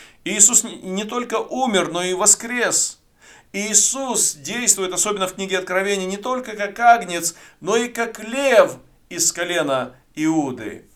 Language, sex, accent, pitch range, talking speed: Russian, male, native, 155-215 Hz, 130 wpm